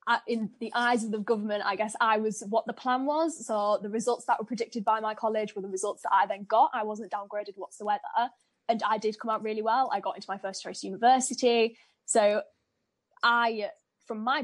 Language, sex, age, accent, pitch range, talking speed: English, female, 10-29, British, 215-250 Hz, 215 wpm